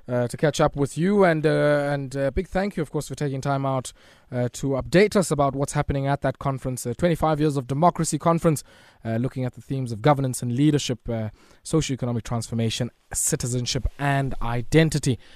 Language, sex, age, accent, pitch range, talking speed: English, male, 20-39, South African, 120-160 Hz, 200 wpm